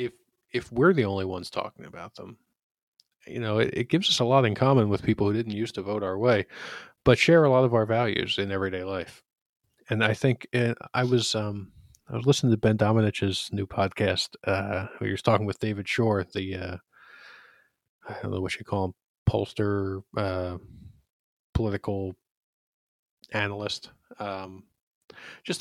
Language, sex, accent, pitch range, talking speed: English, male, American, 100-120 Hz, 175 wpm